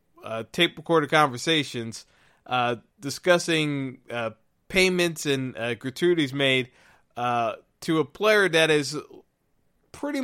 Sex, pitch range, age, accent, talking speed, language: male, 130-165 Hz, 20-39, American, 110 wpm, English